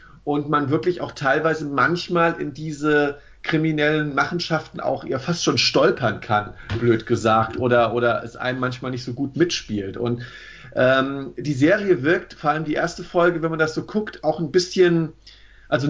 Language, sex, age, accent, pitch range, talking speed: German, male, 50-69, German, 125-165 Hz, 175 wpm